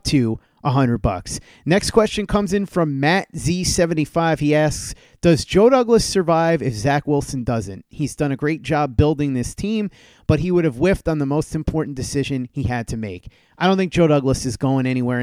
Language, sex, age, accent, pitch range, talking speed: English, male, 30-49, American, 130-160 Hz, 200 wpm